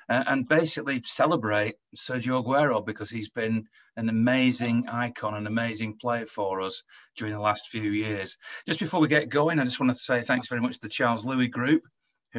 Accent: British